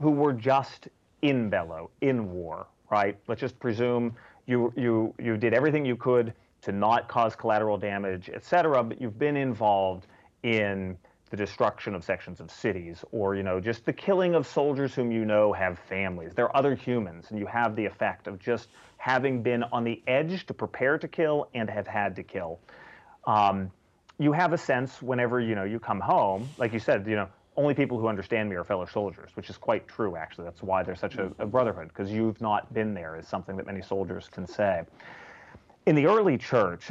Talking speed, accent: 205 wpm, American